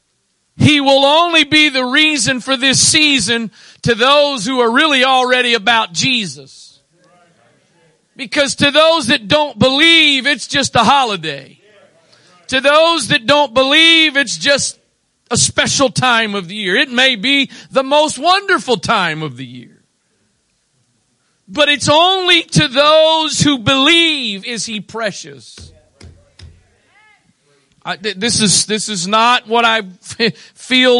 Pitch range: 185-280 Hz